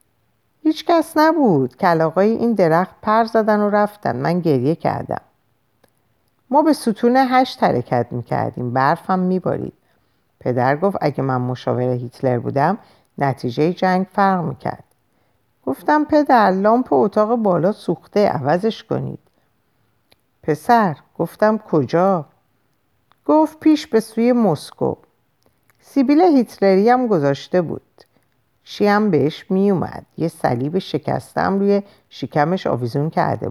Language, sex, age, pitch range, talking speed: Persian, female, 50-69, 160-245 Hz, 115 wpm